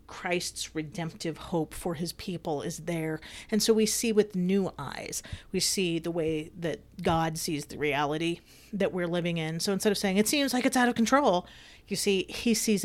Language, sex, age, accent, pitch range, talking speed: English, female, 40-59, American, 165-195 Hz, 200 wpm